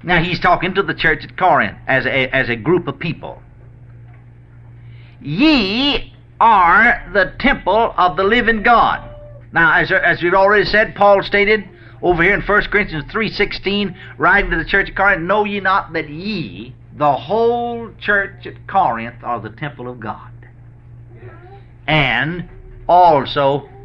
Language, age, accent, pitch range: English, 50-69, American, 120-170 Hz